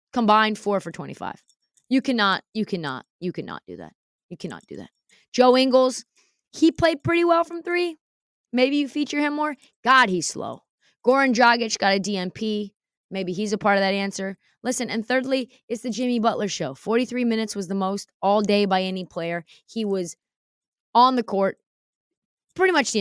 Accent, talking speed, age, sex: American, 185 wpm, 20-39, female